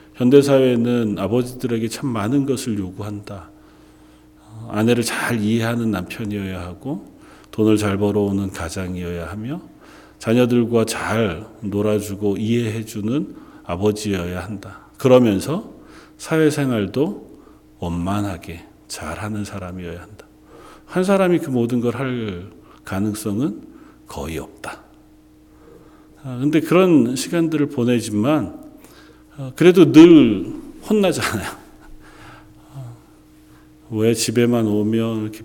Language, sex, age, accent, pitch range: Korean, male, 40-59, native, 105-135 Hz